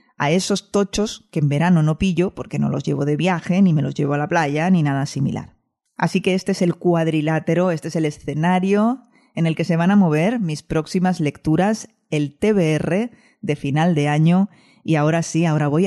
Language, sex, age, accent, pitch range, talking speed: Spanish, female, 20-39, Spanish, 155-200 Hz, 210 wpm